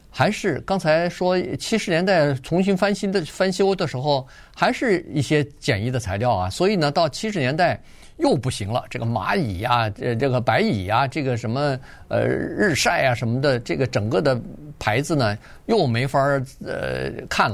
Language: Chinese